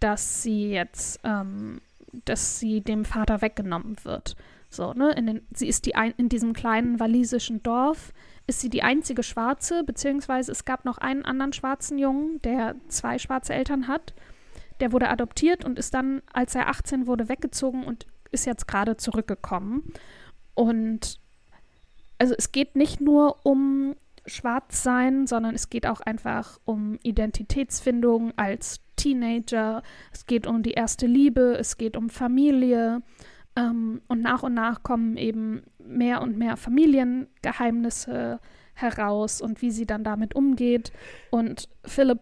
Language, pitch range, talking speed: German, 230-265 Hz, 150 wpm